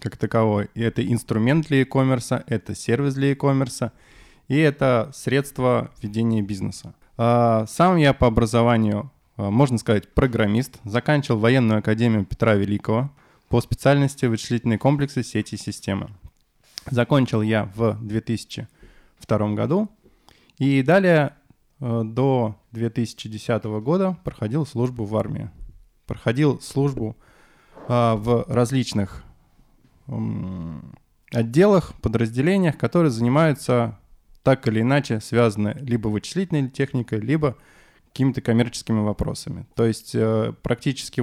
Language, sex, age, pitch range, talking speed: Russian, male, 20-39, 110-135 Hz, 100 wpm